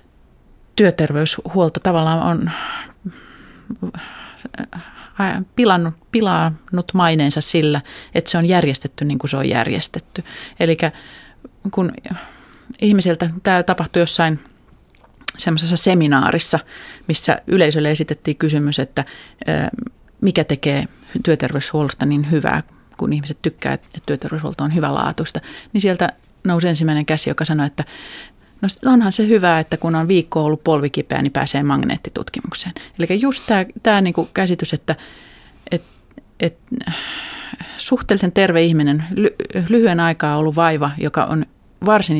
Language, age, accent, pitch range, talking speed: Finnish, 30-49, native, 150-185 Hz, 115 wpm